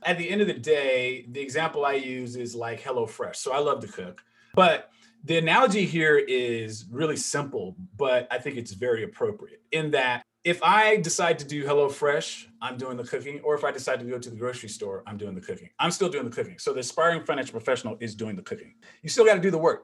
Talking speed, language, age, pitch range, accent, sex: 235 wpm, English, 40-59, 125-180 Hz, American, male